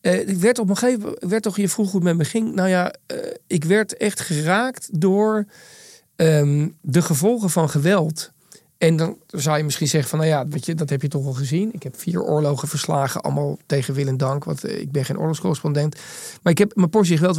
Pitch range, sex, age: 155-210 Hz, male, 40-59